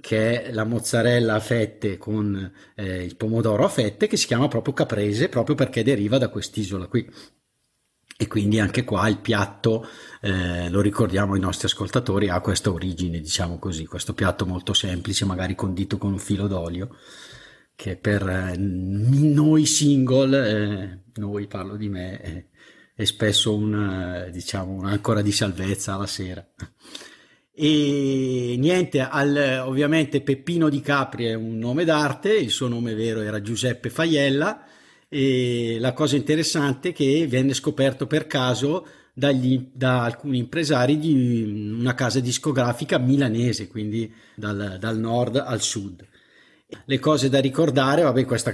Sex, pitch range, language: male, 100-135 Hz, Italian